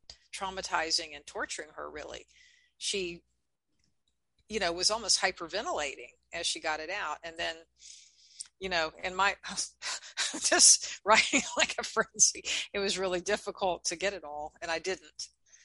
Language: English